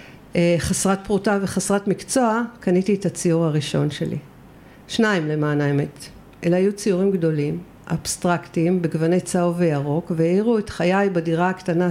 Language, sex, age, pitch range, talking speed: Hebrew, female, 50-69, 165-195 Hz, 125 wpm